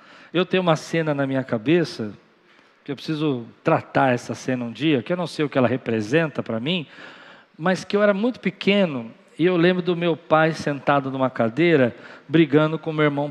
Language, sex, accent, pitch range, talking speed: Portuguese, male, Brazilian, 140-200 Hz, 205 wpm